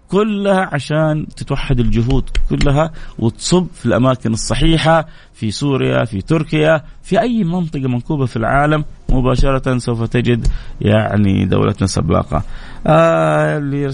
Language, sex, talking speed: Arabic, male, 110 wpm